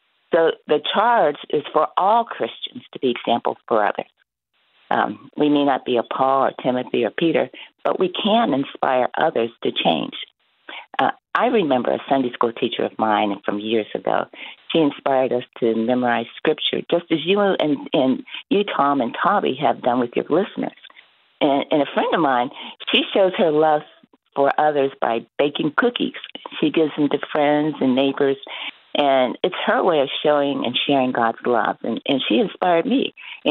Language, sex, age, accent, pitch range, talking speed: English, female, 50-69, American, 130-175 Hz, 180 wpm